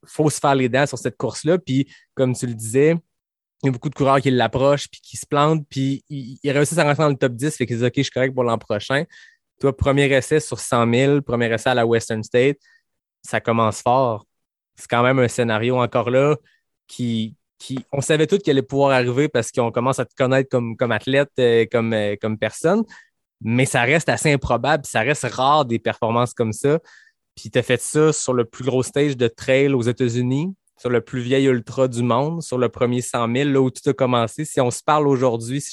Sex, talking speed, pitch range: male, 225 wpm, 120-145 Hz